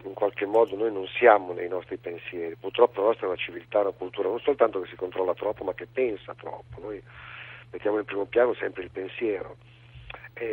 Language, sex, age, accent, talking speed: Italian, male, 50-69, native, 205 wpm